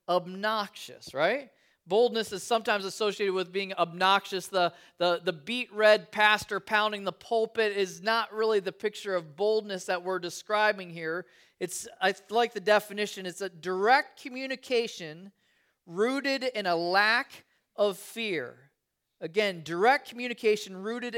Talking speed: 135 wpm